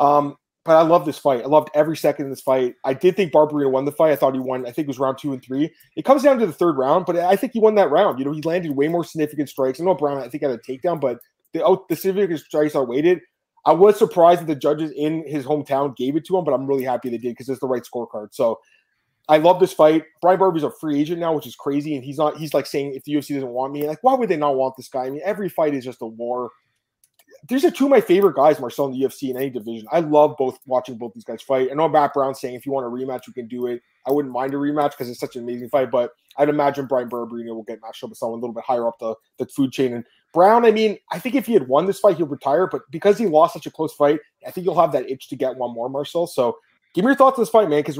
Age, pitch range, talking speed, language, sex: 20-39, 130-170 Hz, 310 wpm, English, male